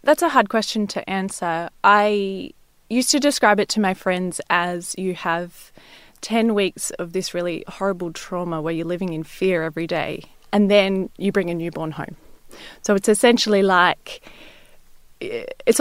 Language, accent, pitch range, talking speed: English, Australian, 170-200 Hz, 165 wpm